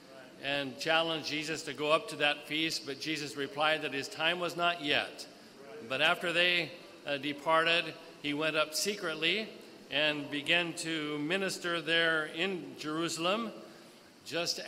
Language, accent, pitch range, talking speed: English, American, 150-170 Hz, 145 wpm